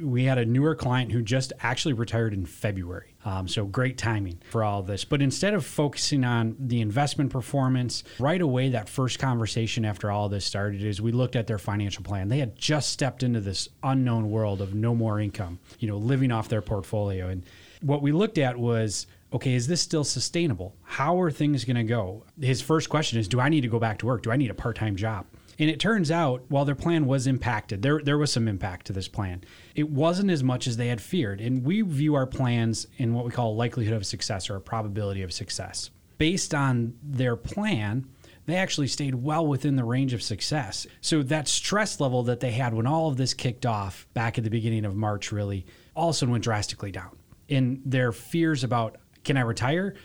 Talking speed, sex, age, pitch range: 220 wpm, male, 30-49, 110-140 Hz